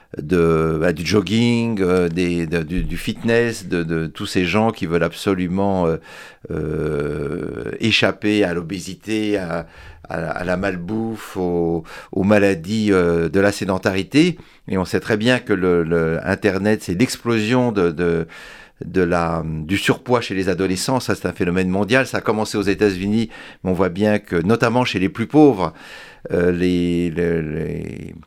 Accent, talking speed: French, 170 wpm